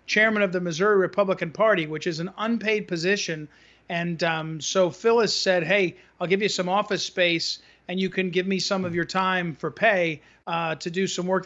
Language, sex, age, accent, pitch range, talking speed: English, male, 40-59, American, 170-195 Hz, 205 wpm